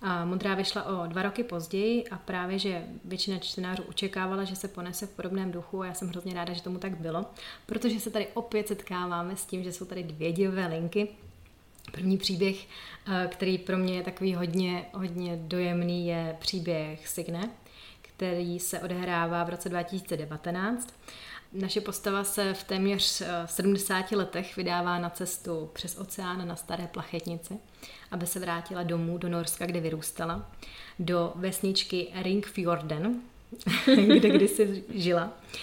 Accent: native